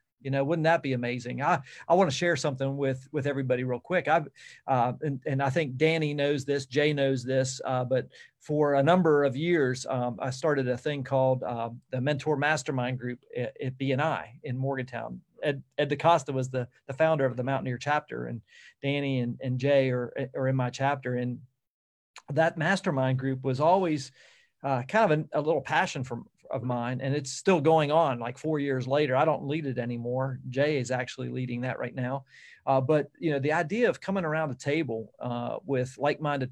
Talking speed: 205 wpm